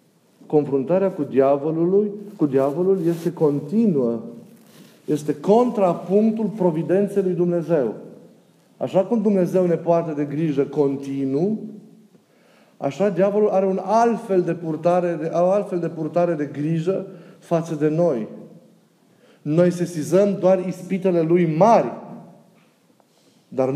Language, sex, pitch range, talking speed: Romanian, male, 160-195 Hz, 110 wpm